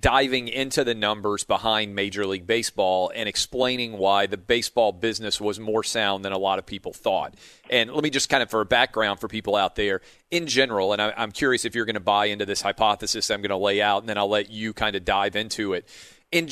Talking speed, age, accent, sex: 235 wpm, 40-59, American, male